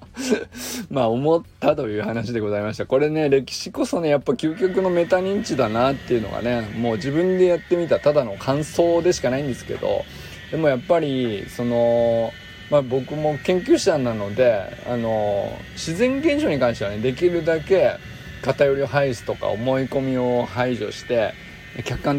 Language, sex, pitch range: Japanese, male, 115-160 Hz